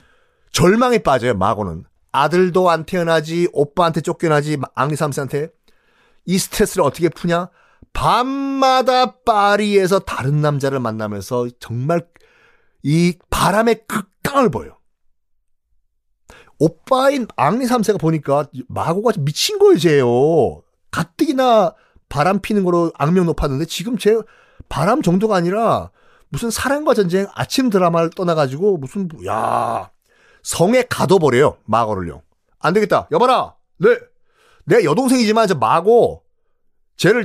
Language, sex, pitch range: Korean, male, 135-225 Hz